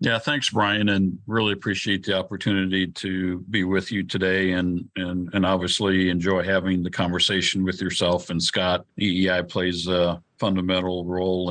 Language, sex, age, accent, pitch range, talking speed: English, male, 50-69, American, 90-100 Hz, 155 wpm